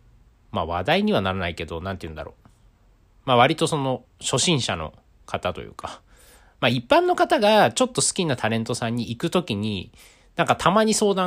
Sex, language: male, Japanese